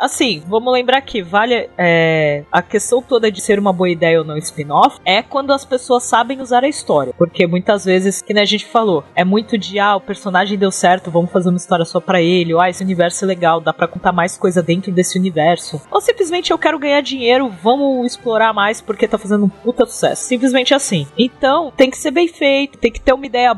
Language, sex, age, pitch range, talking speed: Portuguese, female, 30-49, 180-250 Hz, 225 wpm